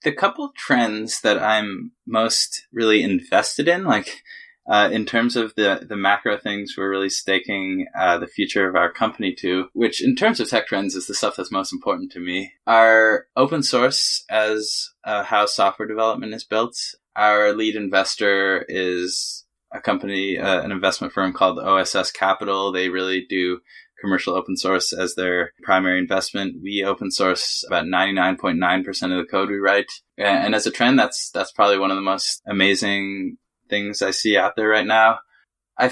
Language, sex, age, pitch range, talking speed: English, male, 20-39, 95-125 Hz, 175 wpm